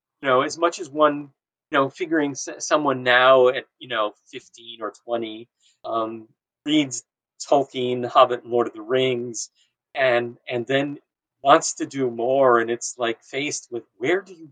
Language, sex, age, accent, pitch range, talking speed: English, male, 40-59, American, 125-175 Hz, 165 wpm